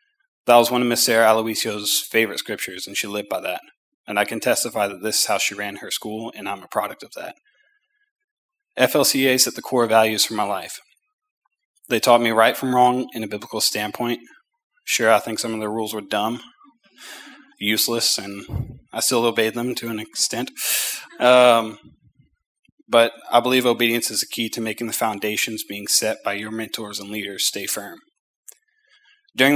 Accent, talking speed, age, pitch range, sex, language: American, 185 wpm, 20-39, 110-135 Hz, male, English